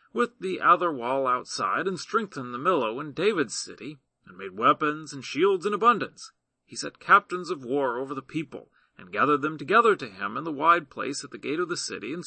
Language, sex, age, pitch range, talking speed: English, male, 40-59, 145-225 Hz, 215 wpm